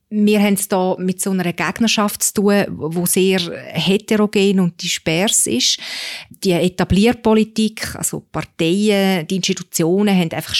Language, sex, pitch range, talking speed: German, female, 175-205 Hz, 135 wpm